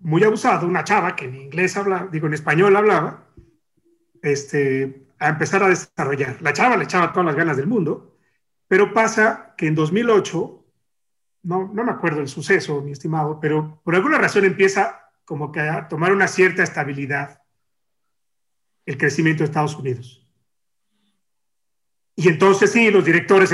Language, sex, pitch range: Spanish, male, 150-195 Hz